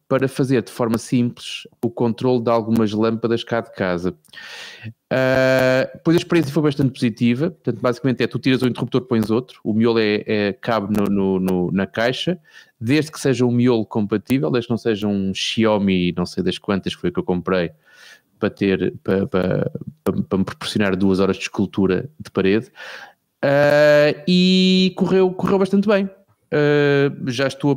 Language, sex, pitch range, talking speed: Portuguese, male, 110-135 Hz, 180 wpm